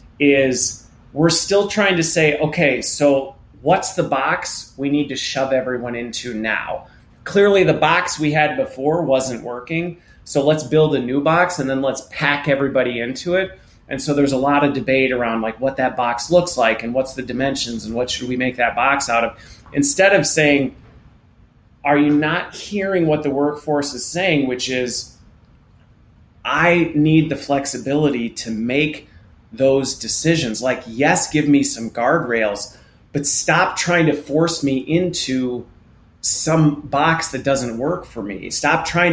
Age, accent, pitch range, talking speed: 30-49, American, 130-165 Hz, 170 wpm